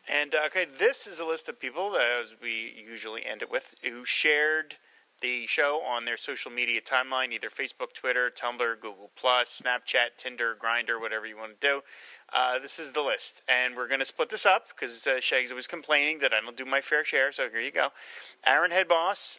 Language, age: English, 30-49